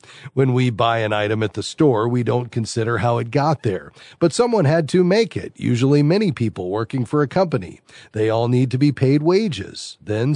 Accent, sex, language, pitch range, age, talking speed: American, male, English, 115-155 Hz, 40-59, 210 wpm